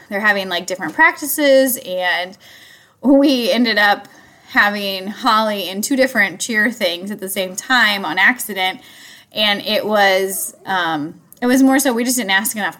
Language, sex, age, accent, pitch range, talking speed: English, female, 20-39, American, 190-250 Hz, 165 wpm